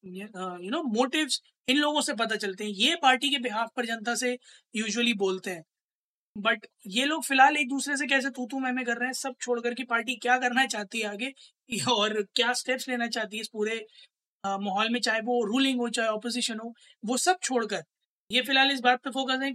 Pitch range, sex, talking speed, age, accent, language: 215-270 Hz, female, 210 wpm, 20-39, native, Hindi